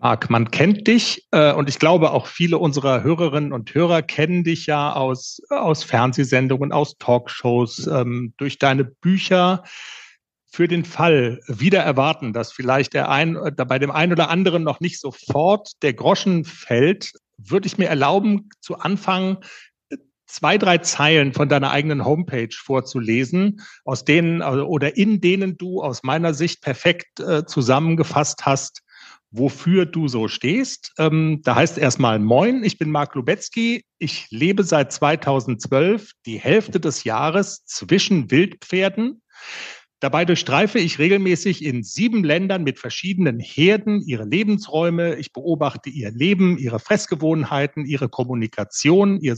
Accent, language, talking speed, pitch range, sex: German, German, 140 wpm, 135-185 Hz, male